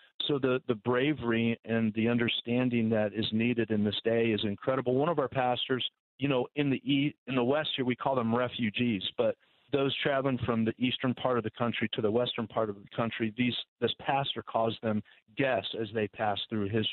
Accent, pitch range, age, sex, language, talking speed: American, 110-135 Hz, 40-59, male, English, 215 wpm